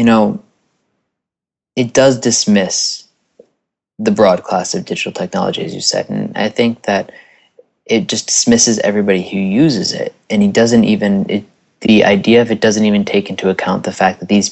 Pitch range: 100-145 Hz